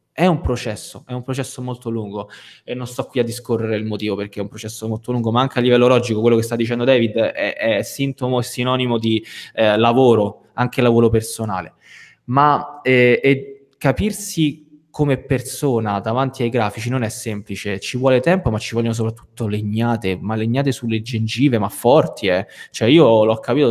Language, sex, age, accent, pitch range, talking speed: Italian, male, 20-39, native, 110-140 Hz, 185 wpm